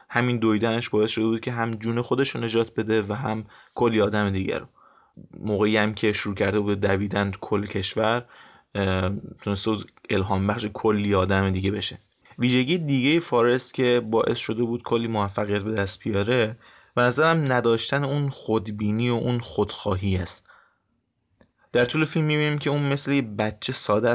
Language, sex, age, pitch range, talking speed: Persian, male, 20-39, 105-120 Hz, 160 wpm